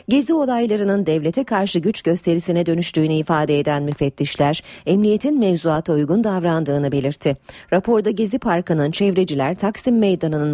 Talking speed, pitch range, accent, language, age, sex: 120 wpm, 145-210 Hz, native, Turkish, 40-59, female